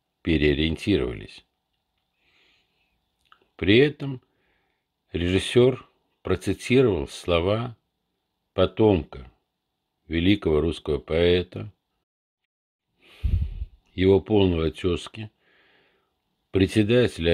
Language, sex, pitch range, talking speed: Russian, male, 80-105 Hz, 50 wpm